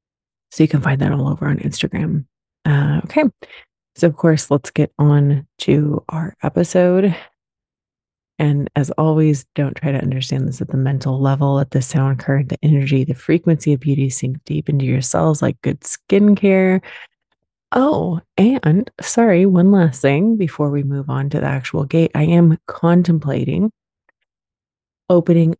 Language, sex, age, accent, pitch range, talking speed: English, female, 30-49, American, 130-160 Hz, 160 wpm